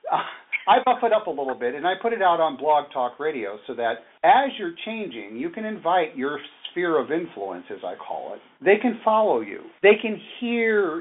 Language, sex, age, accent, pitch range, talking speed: English, male, 50-69, American, 130-215 Hz, 220 wpm